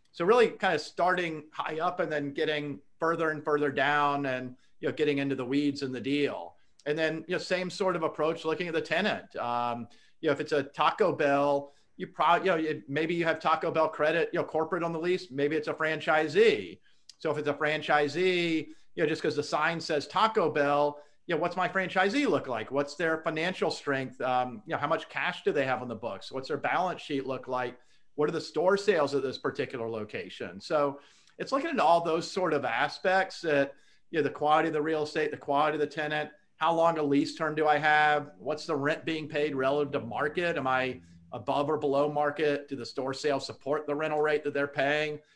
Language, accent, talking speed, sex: English, American, 230 wpm, male